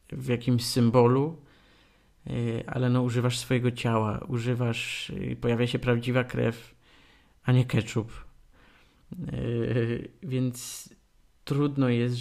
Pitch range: 115-135 Hz